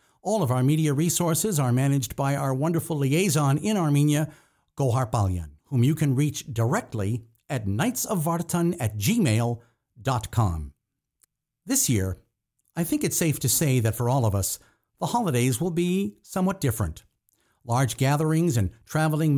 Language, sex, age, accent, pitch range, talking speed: English, male, 50-69, American, 115-170 Hz, 140 wpm